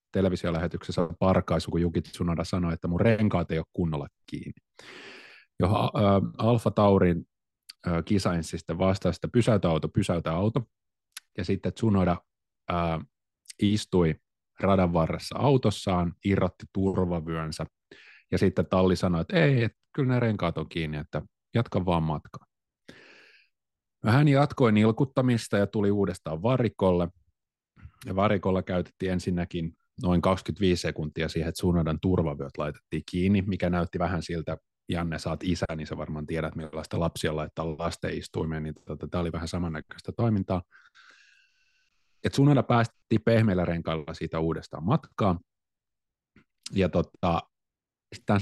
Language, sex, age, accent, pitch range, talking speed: Finnish, male, 30-49, native, 80-105 Hz, 125 wpm